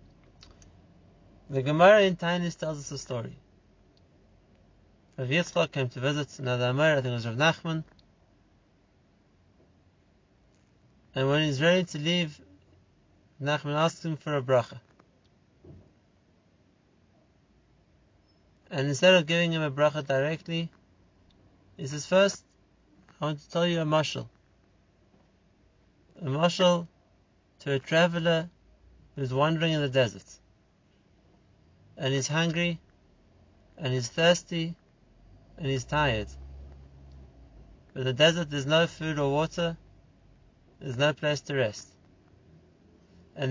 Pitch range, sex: 95-160 Hz, male